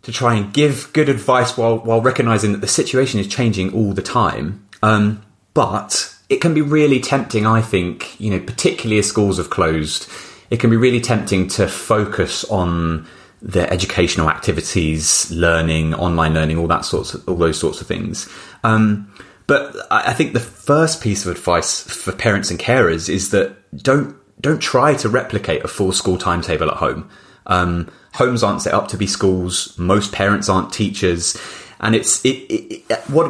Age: 30-49